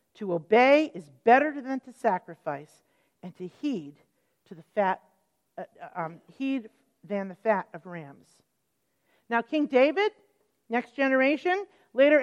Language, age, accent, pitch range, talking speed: English, 50-69, American, 205-275 Hz, 130 wpm